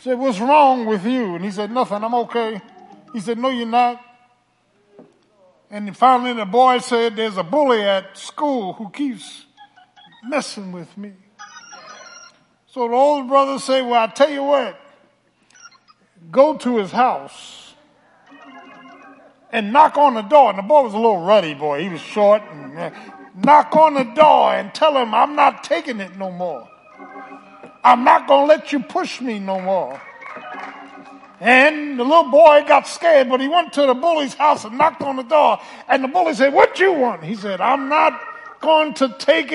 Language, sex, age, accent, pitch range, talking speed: English, male, 50-69, American, 230-300 Hz, 175 wpm